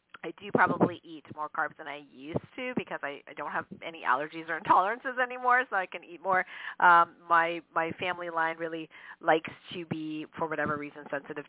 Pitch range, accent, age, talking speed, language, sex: 155-185 Hz, American, 40-59, 200 wpm, English, female